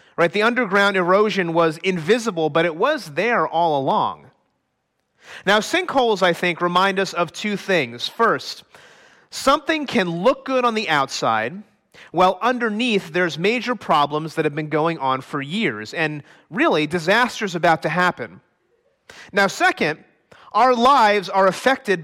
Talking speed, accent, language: 145 wpm, American, English